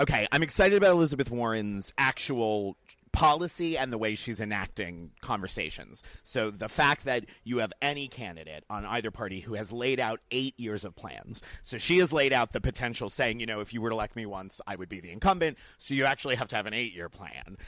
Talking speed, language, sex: 215 wpm, English, male